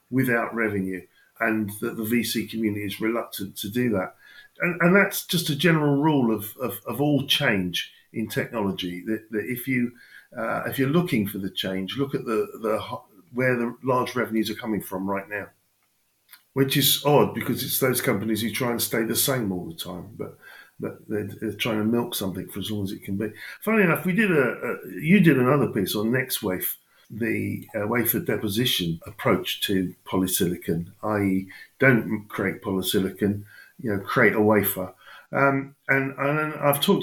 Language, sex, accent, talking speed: English, male, British, 185 wpm